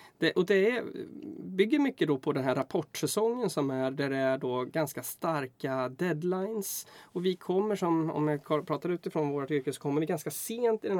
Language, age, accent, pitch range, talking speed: Swedish, 20-39, native, 135-190 Hz, 185 wpm